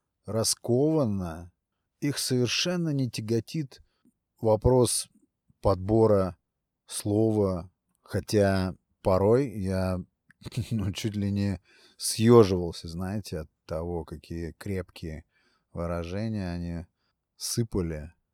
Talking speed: 80 wpm